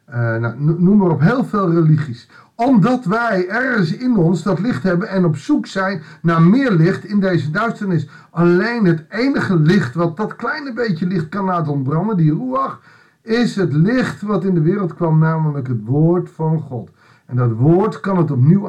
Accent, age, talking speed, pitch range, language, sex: Dutch, 50-69, 185 wpm, 145-195 Hz, Dutch, male